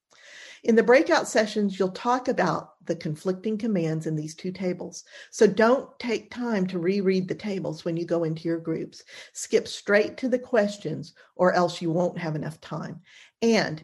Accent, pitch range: American, 165-220 Hz